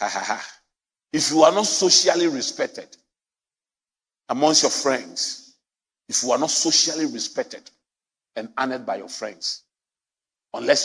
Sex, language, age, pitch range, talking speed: male, English, 50-69, 190-280 Hz, 115 wpm